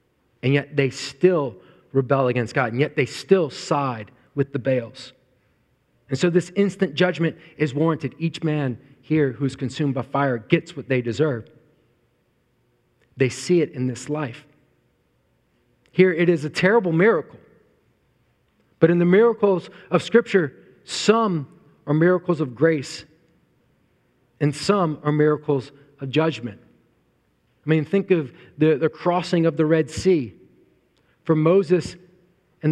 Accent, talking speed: American, 140 wpm